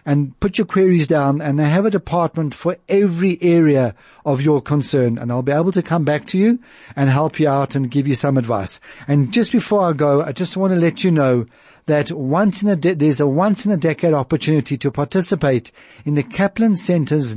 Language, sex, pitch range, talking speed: English, male, 145-190 Hz, 220 wpm